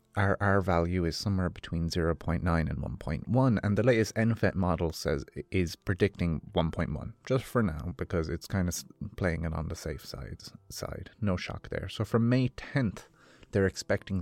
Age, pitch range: 30-49, 85-100 Hz